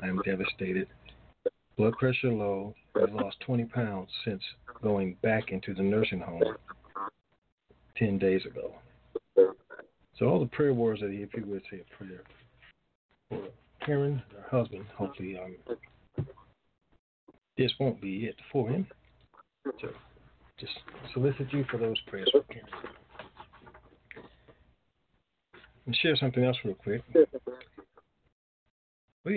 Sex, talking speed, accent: male, 125 wpm, American